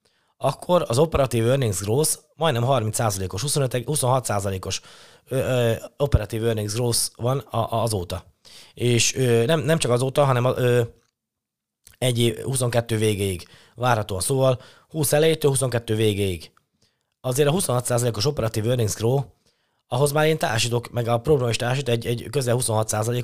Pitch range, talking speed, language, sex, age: 110-130 Hz, 135 wpm, Hungarian, male, 20-39